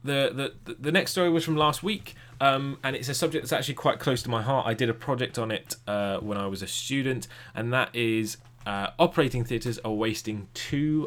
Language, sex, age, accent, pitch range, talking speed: English, male, 10-29, British, 105-130 Hz, 230 wpm